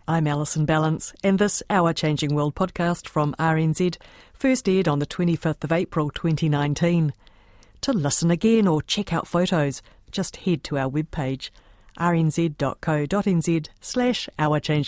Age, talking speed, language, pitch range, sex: 50-69, 135 wpm, English, 145-185 Hz, female